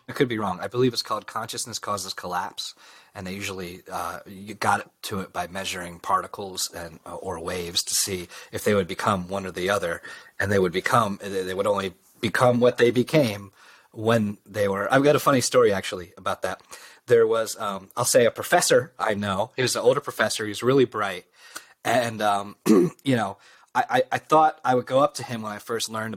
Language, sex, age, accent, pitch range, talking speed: English, male, 30-49, American, 105-130 Hz, 215 wpm